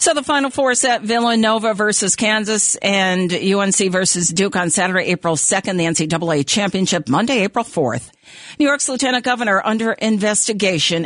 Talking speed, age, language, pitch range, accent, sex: 150 wpm, 50-69, English, 155-200 Hz, American, female